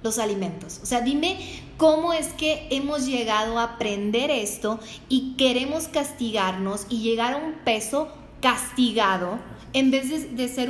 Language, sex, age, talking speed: Spanish, female, 20-39, 150 wpm